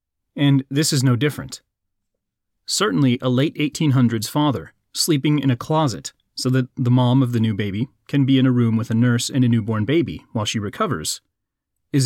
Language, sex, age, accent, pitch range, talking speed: English, male, 30-49, American, 115-145 Hz, 190 wpm